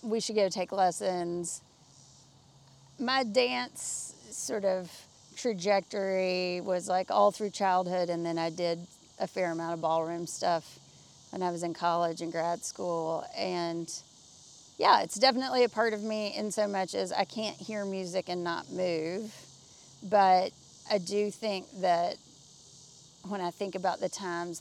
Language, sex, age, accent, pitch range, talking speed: English, female, 30-49, American, 165-200 Hz, 155 wpm